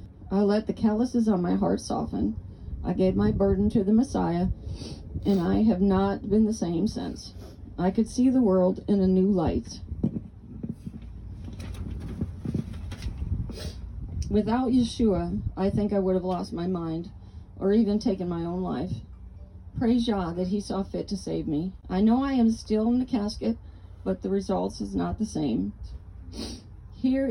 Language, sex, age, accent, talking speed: English, female, 40-59, American, 160 wpm